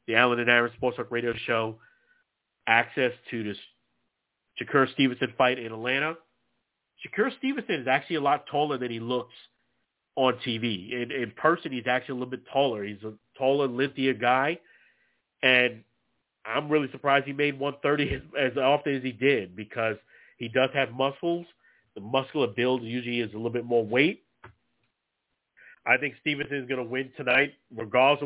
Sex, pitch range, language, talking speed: male, 115-135 Hz, English, 170 wpm